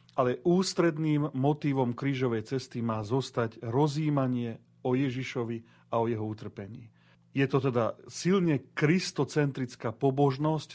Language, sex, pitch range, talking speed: Slovak, male, 115-140 Hz, 110 wpm